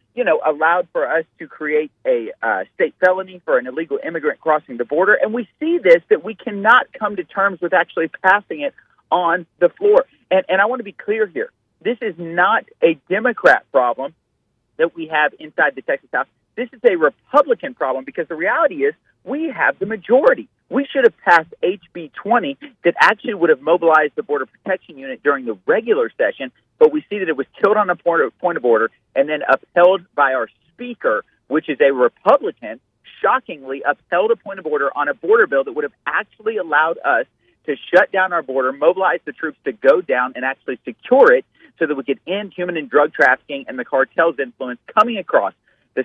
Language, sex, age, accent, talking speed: English, male, 40-59, American, 205 wpm